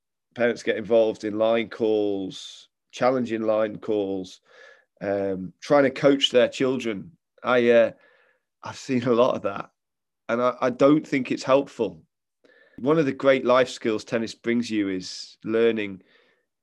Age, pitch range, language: 30-49, 110-130 Hz, English